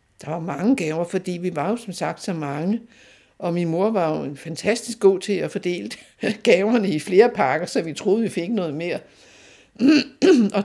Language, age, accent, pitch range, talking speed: Danish, 60-79, native, 170-245 Hz, 190 wpm